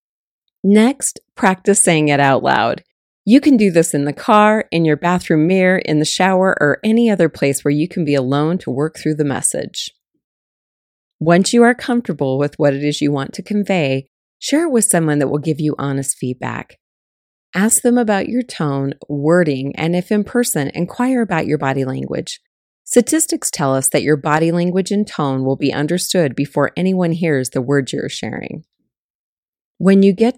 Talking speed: 185 wpm